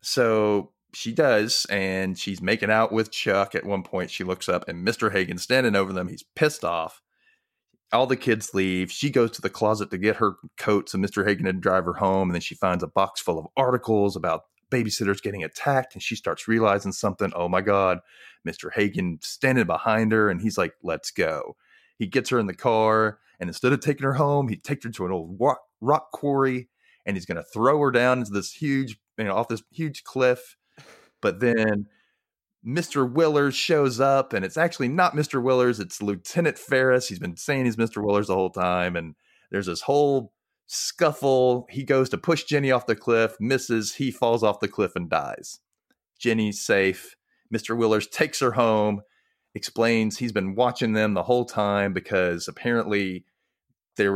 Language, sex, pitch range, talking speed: English, male, 100-130 Hz, 195 wpm